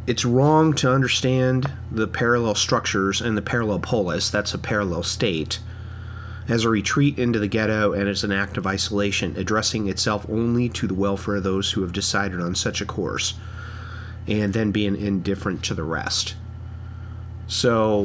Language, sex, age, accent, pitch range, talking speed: English, male, 30-49, American, 95-115 Hz, 165 wpm